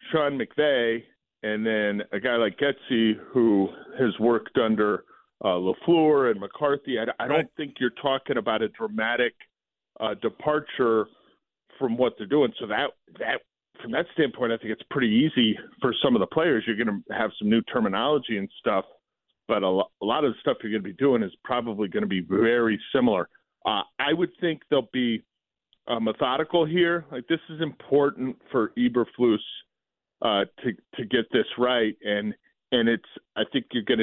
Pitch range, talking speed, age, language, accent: 110-140 Hz, 180 wpm, 40-59, English, American